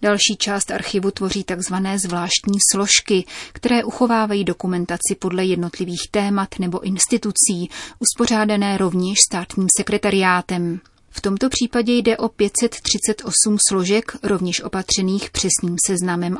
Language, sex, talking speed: Czech, female, 110 wpm